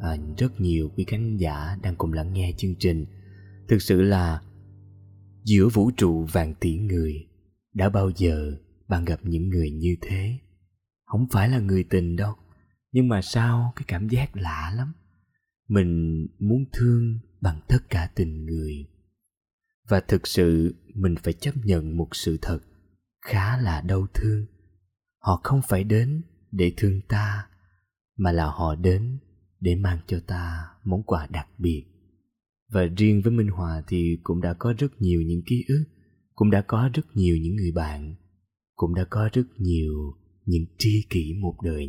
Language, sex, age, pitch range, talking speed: Vietnamese, male, 20-39, 85-105 Hz, 170 wpm